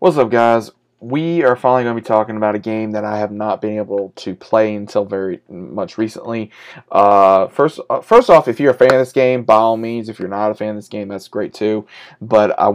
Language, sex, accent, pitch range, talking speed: English, male, American, 105-125 Hz, 245 wpm